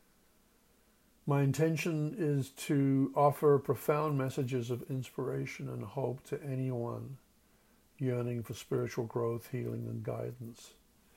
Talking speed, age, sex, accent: 105 wpm, 60-79, male, American